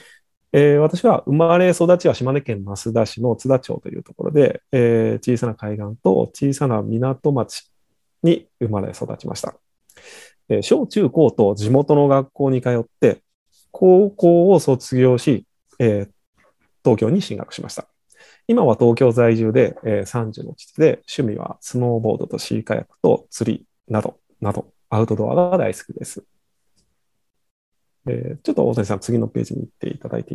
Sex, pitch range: male, 110-170 Hz